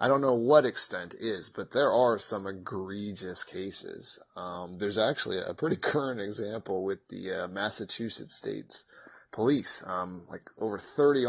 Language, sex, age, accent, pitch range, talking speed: English, male, 30-49, American, 95-120 Hz, 155 wpm